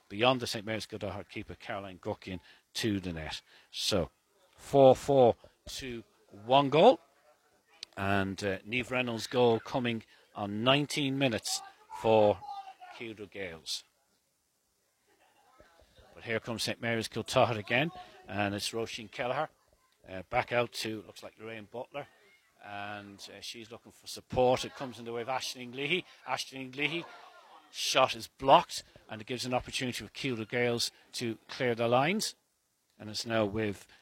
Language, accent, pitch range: English, British, 110-135 Hz